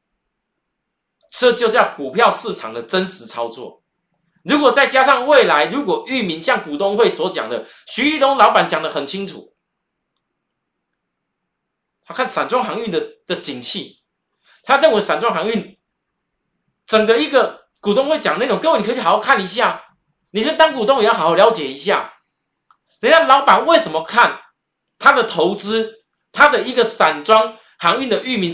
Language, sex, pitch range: Chinese, male, 165-255 Hz